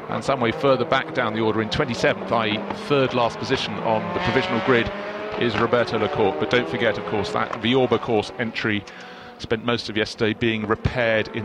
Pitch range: 110-160 Hz